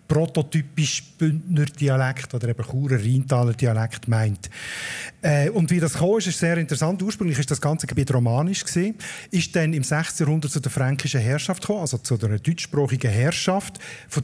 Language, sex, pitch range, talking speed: German, male, 135-165 Hz, 155 wpm